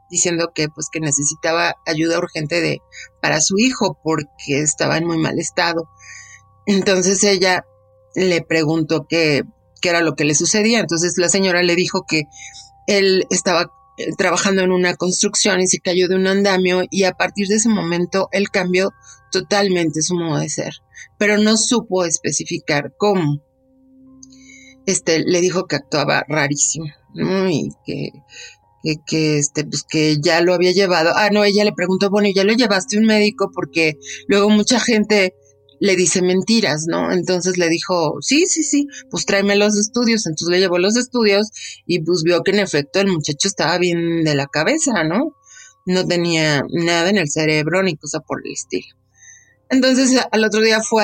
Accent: Mexican